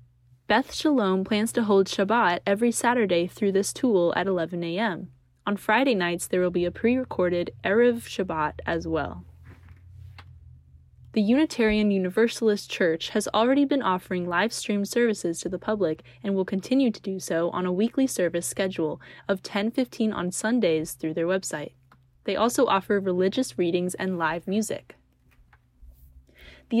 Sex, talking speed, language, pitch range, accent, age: female, 150 wpm, English, 170-225 Hz, American, 10-29